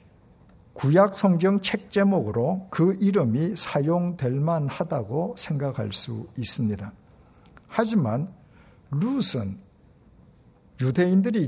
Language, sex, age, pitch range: Korean, male, 60-79, 120-185 Hz